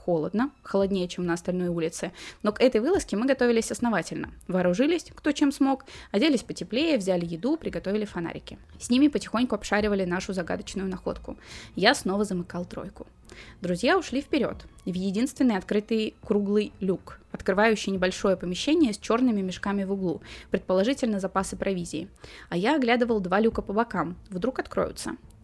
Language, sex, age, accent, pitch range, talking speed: Russian, female, 20-39, native, 185-245 Hz, 145 wpm